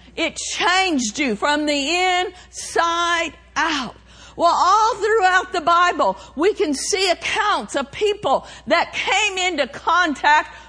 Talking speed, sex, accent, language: 125 wpm, female, American, English